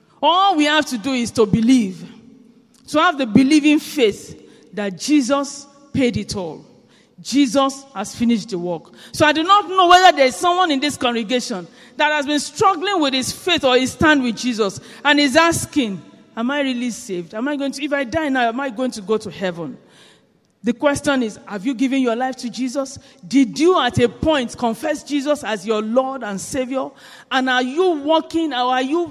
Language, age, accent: English, 40-59, Nigerian